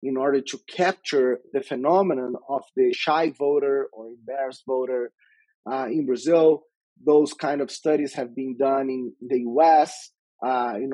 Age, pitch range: 30-49, 135-210 Hz